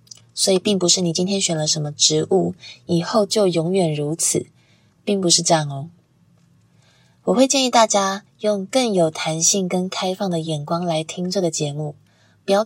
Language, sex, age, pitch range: Chinese, female, 20-39, 160-200 Hz